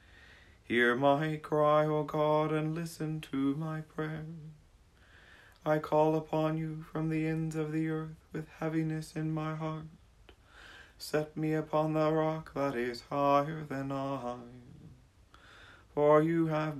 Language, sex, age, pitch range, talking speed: English, male, 30-49, 130-155 Hz, 135 wpm